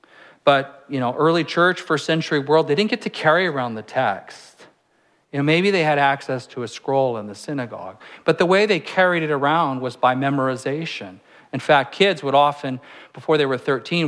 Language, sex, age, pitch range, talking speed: English, male, 40-59, 125-170 Hz, 200 wpm